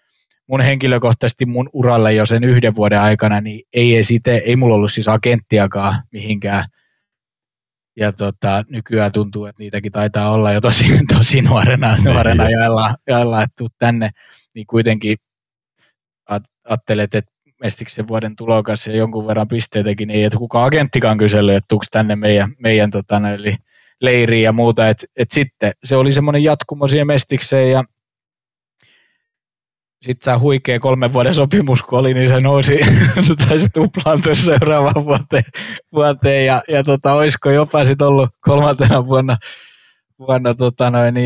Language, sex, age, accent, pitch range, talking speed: Finnish, male, 20-39, native, 110-130 Hz, 145 wpm